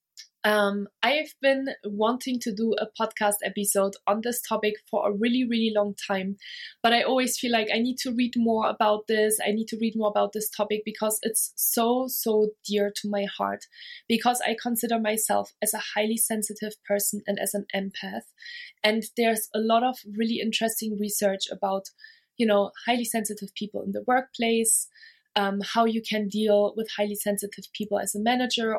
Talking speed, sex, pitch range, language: 185 wpm, female, 205-235 Hz, English